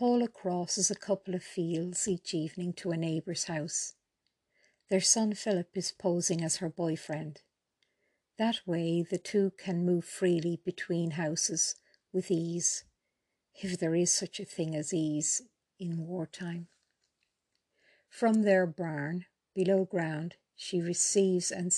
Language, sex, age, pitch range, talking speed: English, female, 50-69, 165-190 Hz, 135 wpm